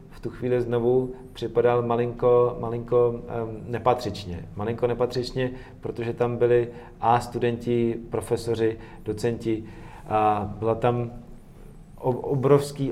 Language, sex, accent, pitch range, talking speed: Czech, male, native, 105-120 Hz, 100 wpm